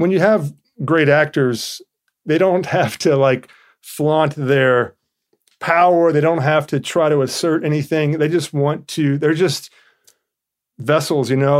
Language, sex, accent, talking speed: English, male, American, 155 wpm